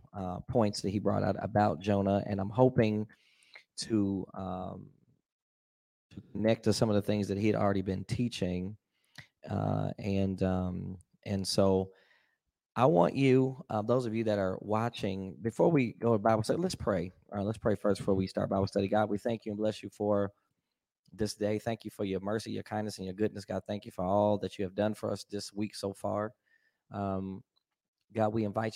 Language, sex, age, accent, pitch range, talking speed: English, male, 20-39, American, 100-110 Hz, 200 wpm